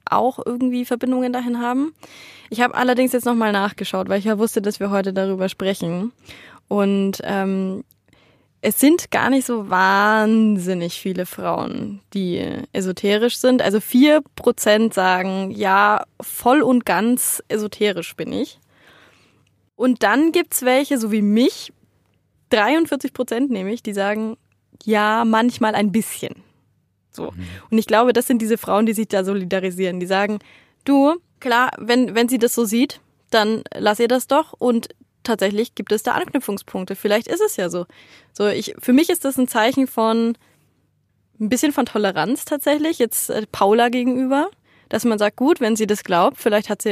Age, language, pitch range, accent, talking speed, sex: 20-39, German, 200-250 Hz, German, 165 wpm, female